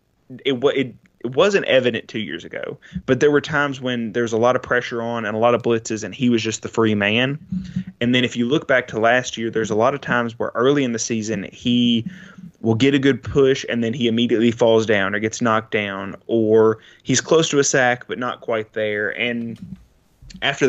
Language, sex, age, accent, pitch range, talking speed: English, male, 20-39, American, 115-130 Hz, 225 wpm